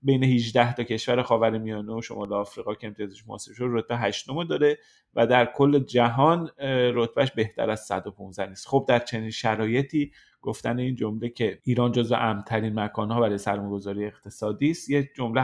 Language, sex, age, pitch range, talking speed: Persian, male, 30-49, 115-145 Hz, 160 wpm